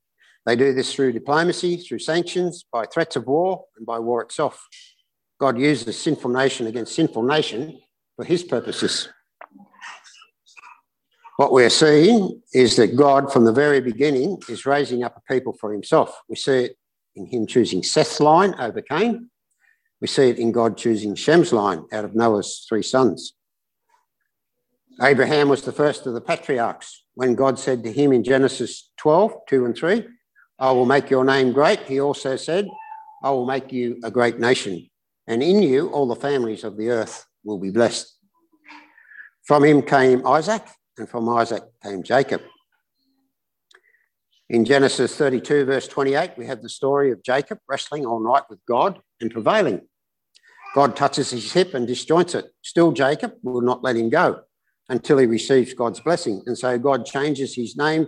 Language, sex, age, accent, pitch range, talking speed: English, male, 60-79, Australian, 120-170 Hz, 170 wpm